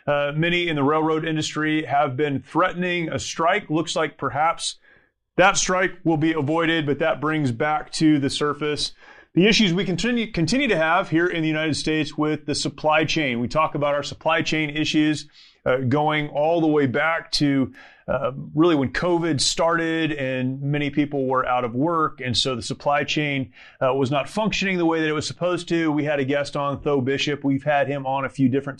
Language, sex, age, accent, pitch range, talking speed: English, male, 30-49, American, 145-170 Hz, 205 wpm